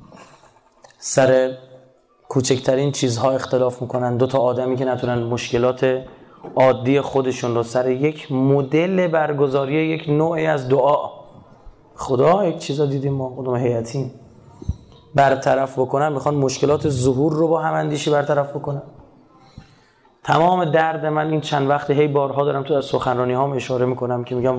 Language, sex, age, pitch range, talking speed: Persian, male, 30-49, 125-145 Hz, 135 wpm